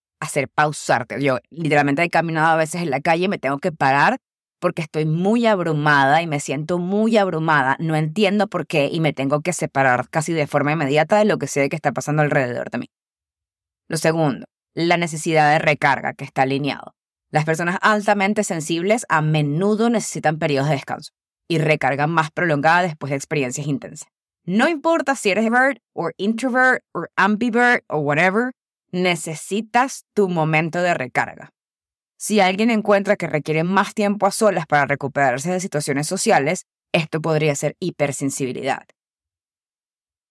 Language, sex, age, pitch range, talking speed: English, female, 20-39, 145-185 Hz, 165 wpm